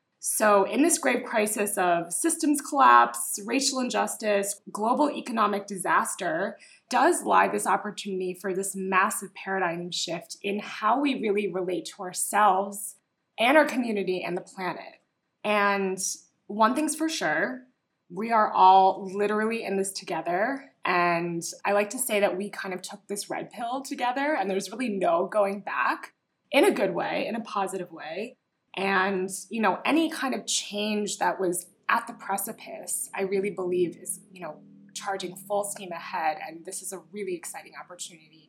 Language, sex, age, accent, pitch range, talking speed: English, female, 20-39, American, 180-225 Hz, 160 wpm